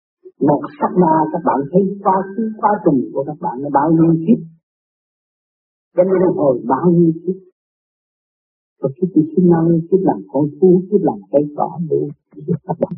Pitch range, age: 140-185 Hz, 50-69